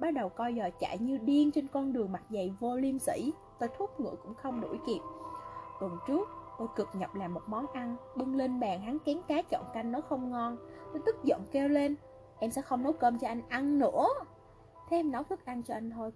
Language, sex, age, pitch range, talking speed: Vietnamese, female, 20-39, 225-295 Hz, 240 wpm